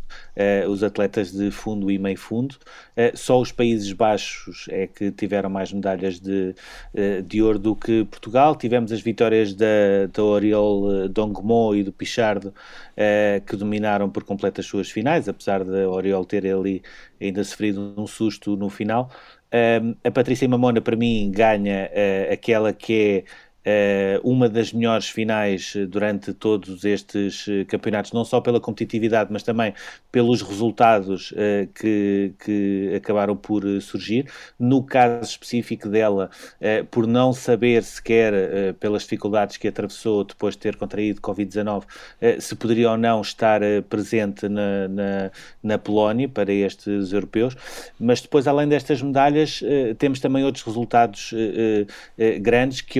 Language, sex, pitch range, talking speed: Portuguese, male, 100-115 Hz, 135 wpm